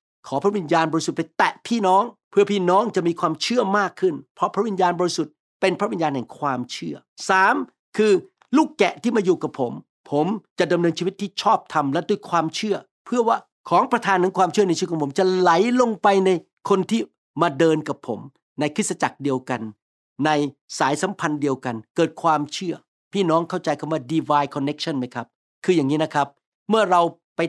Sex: male